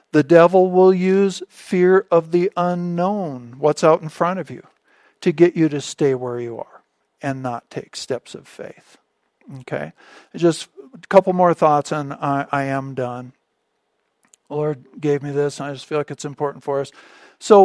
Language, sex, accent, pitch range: English, male, American, 140-175 Hz